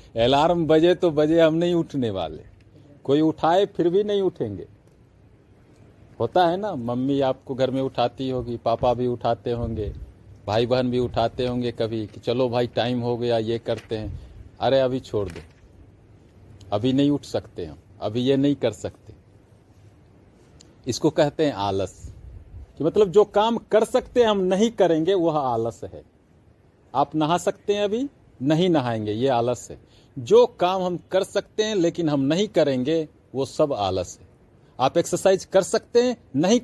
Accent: native